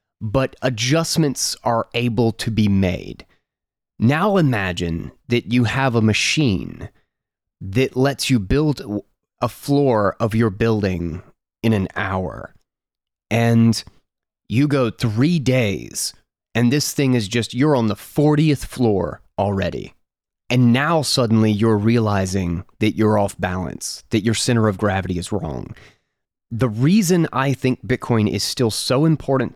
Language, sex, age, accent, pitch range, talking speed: English, male, 30-49, American, 100-125 Hz, 135 wpm